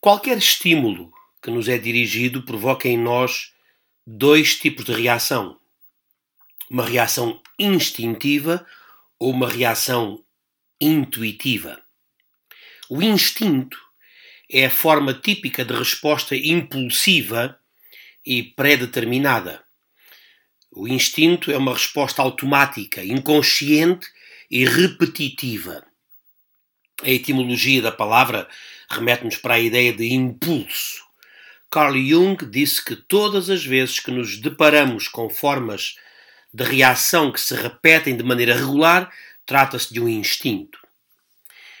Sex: male